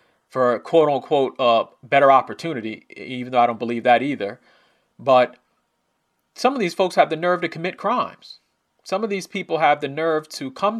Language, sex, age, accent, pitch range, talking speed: English, male, 40-59, American, 135-180 Hz, 190 wpm